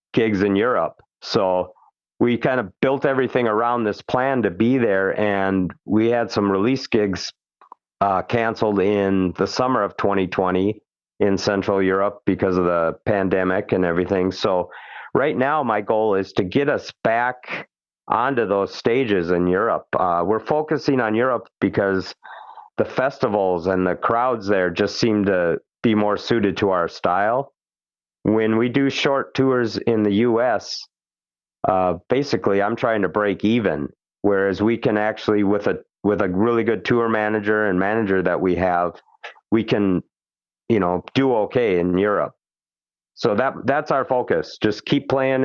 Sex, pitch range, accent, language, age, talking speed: male, 90-115 Hz, American, English, 50-69, 160 wpm